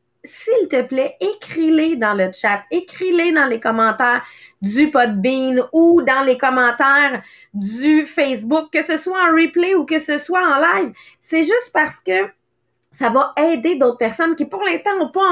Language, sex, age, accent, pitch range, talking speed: English, female, 30-49, Canadian, 245-335 Hz, 170 wpm